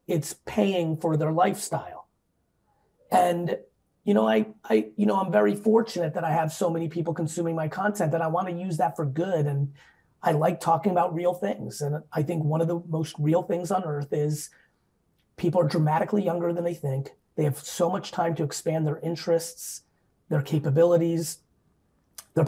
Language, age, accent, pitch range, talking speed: English, 30-49, American, 155-185 Hz, 185 wpm